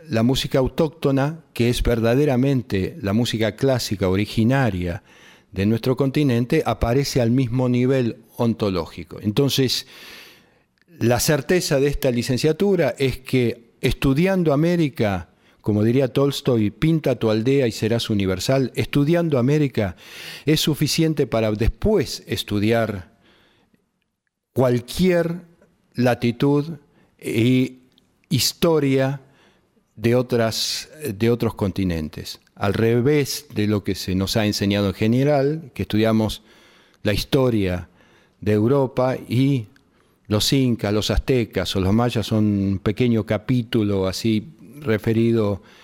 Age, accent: 40-59, Argentinian